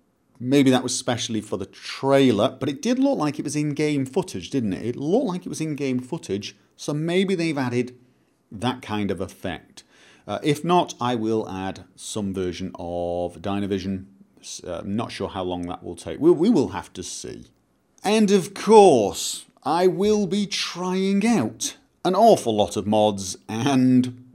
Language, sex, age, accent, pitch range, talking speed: English, male, 40-59, British, 100-130 Hz, 175 wpm